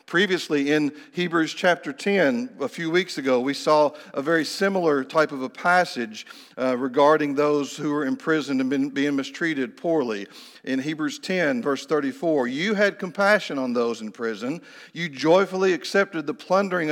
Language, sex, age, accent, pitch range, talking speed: English, male, 50-69, American, 150-190 Hz, 165 wpm